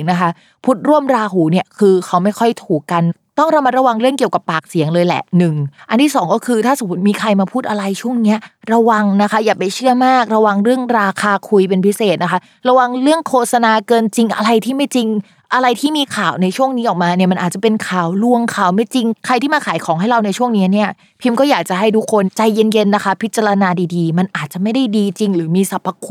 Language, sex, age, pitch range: Thai, female, 20-39, 175-230 Hz